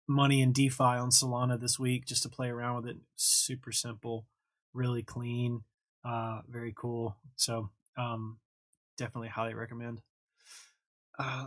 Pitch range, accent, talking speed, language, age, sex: 120-145 Hz, American, 135 wpm, English, 20-39, male